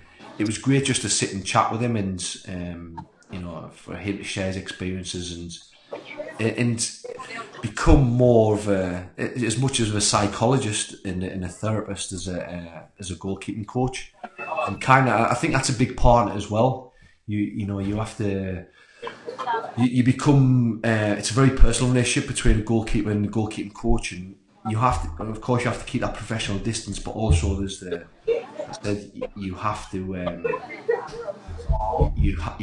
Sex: male